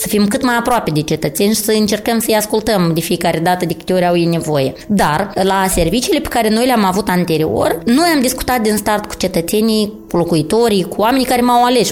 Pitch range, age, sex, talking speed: 180-245 Hz, 20-39, female, 220 wpm